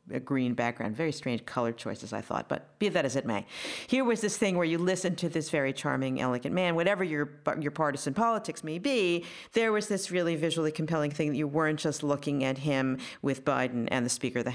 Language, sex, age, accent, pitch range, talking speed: English, female, 50-69, American, 130-180 Hz, 230 wpm